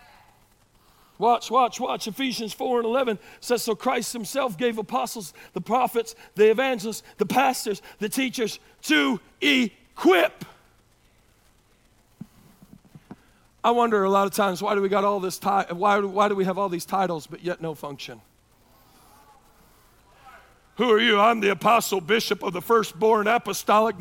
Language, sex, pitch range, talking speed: English, male, 195-235 Hz, 145 wpm